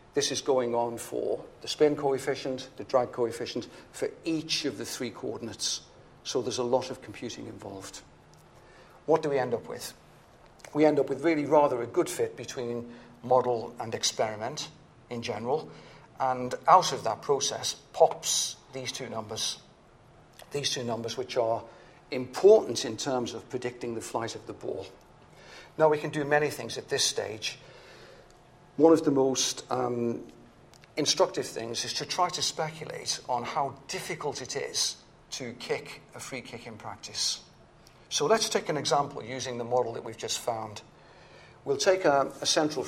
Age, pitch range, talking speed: 50-69, 120-150 Hz, 165 wpm